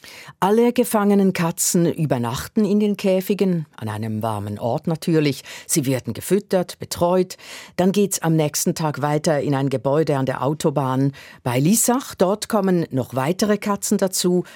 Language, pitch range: German, 145-205 Hz